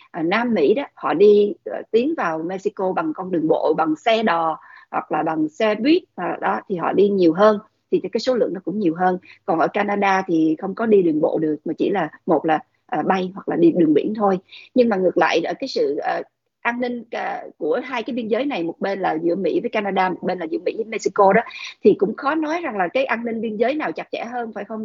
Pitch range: 185-265 Hz